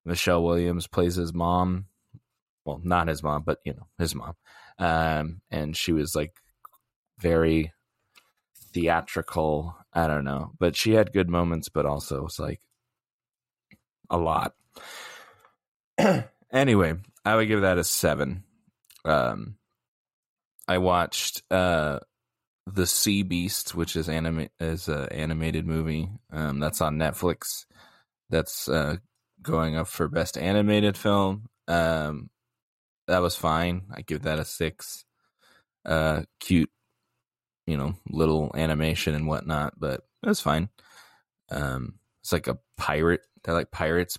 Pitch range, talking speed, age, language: 80-95 Hz, 135 wpm, 20-39, English